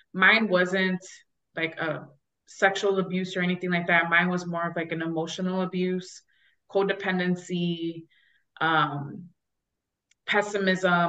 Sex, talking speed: female, 115 wpm